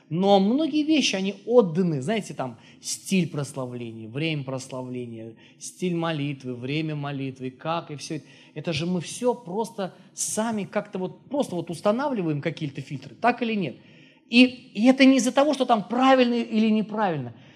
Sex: male